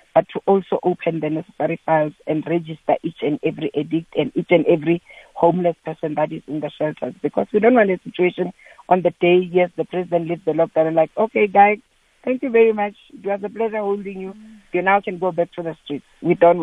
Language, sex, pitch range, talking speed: English, female, 155-185 Hz, 225 wpm